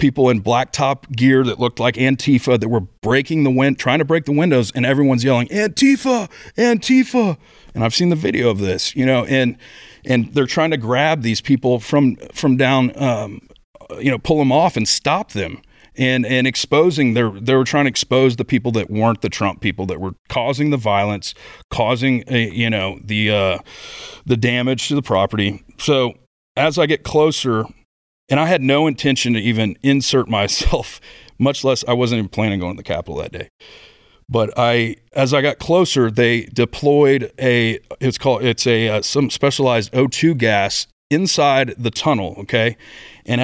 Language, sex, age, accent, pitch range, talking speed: English, male, 40-59, American, 115-140 Hz, 185 wpm